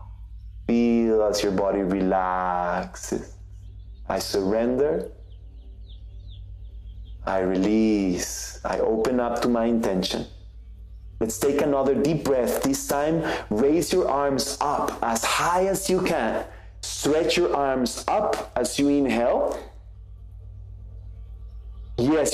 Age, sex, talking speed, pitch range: 30-49, male, 100 wpm, 95-150 Hz